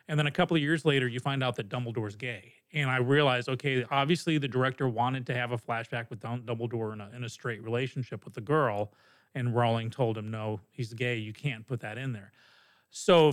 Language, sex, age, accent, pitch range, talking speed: English, male, 40-59, American, 125-165 Hz, 220 wpm